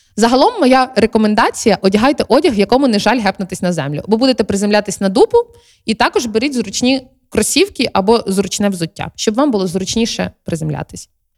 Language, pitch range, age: Ukrainian, 190-250 Hz, 20-39